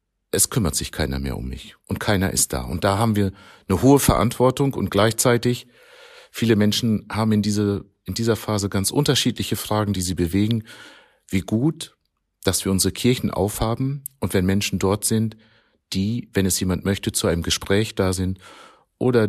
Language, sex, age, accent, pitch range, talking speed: German, male, 40-59, German, 90-110 Hz, 175 wpm